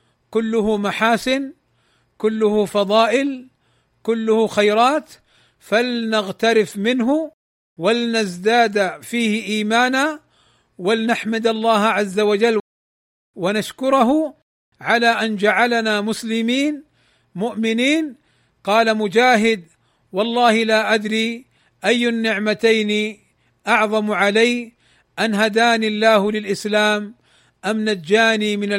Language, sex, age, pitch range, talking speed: Arabic, male, 50-69, 190-225 Hz, 75 wpm